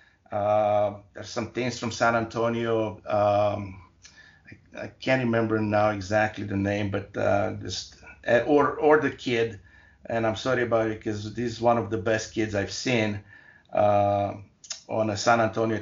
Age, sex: 50-69, male